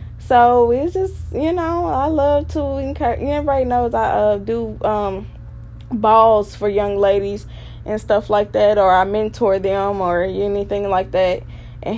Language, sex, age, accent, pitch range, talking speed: English, female, 10-29, American, 190-250 Hz, 160 wpm